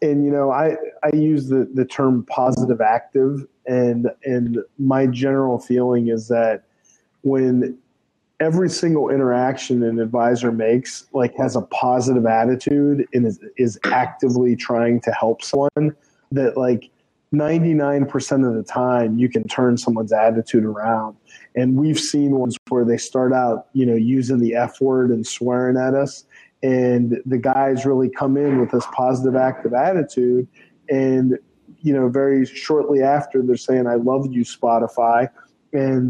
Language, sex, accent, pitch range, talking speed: English, male, American, 120-135 Hz, 155 wpm